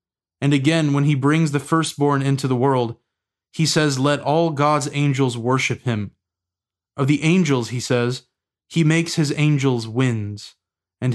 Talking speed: 155 wpm